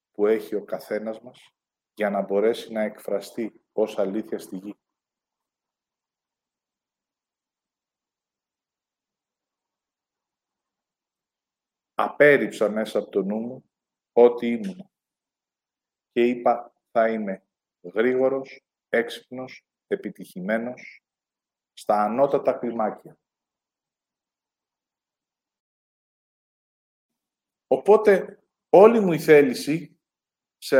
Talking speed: 75 wpm